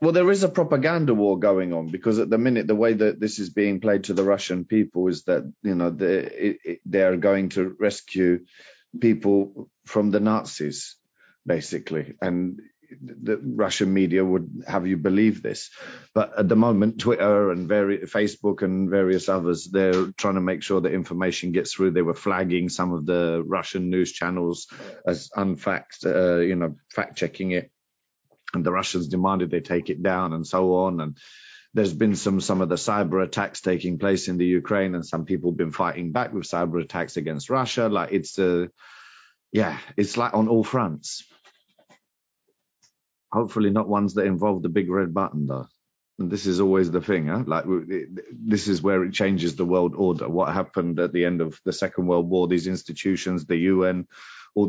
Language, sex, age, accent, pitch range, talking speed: English, male, 40-59, British, 90-105 Hz, 190 wpm